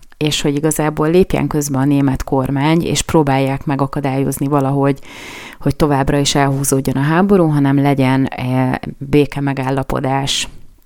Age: 30-49